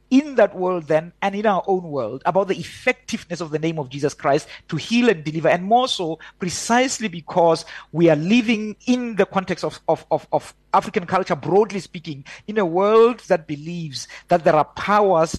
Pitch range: 160-205 Hz